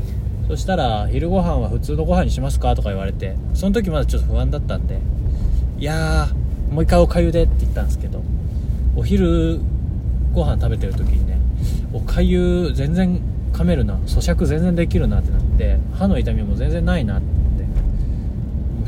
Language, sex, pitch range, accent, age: Japanese, male, 65-90 Hz, native, 20-39